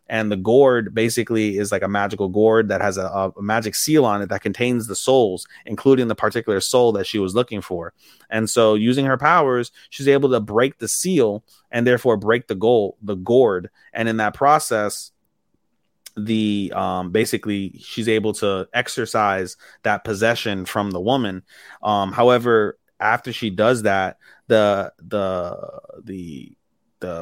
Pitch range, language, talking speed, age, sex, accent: 100-115 Hz, English, 165 wpm, 30-49, male, American